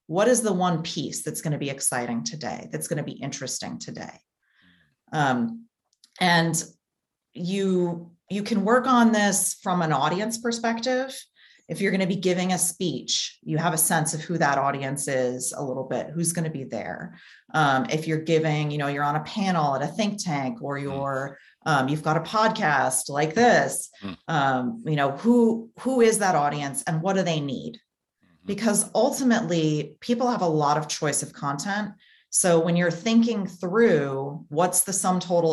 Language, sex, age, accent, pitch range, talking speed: English, female, 30-49, American, 145-195 Hz, 185 wpm